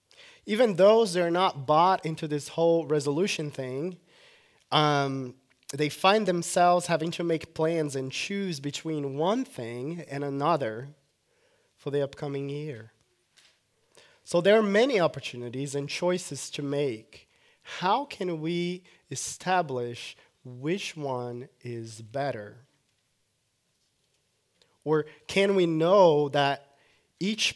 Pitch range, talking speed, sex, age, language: 135-170 Hz, 115 wpm, male, 20-39, English